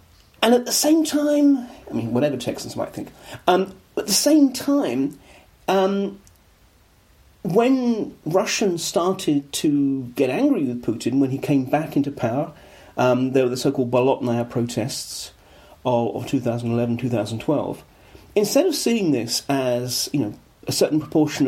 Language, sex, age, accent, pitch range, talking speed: English, male, 40-59, British, 120-175 Hz, 145 wpm